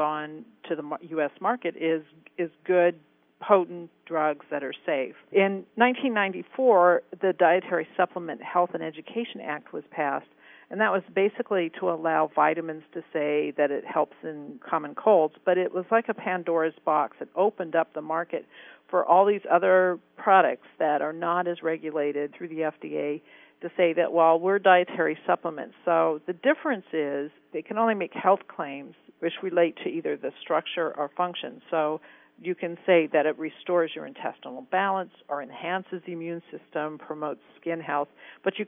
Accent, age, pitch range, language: American, 50-69, 155-190 Hz, English